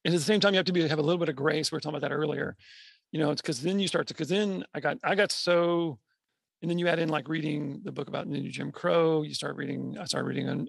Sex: male